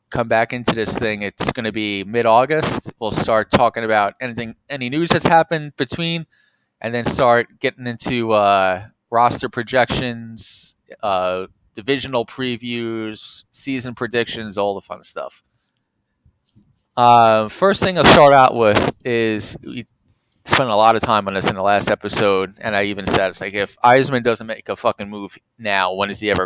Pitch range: 105-130 Hz